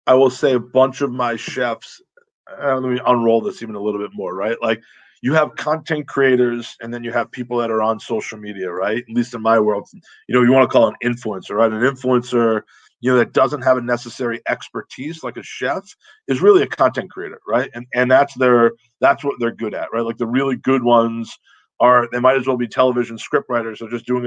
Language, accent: English, American